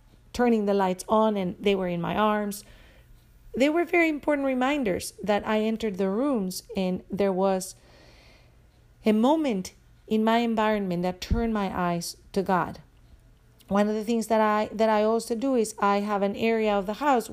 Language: English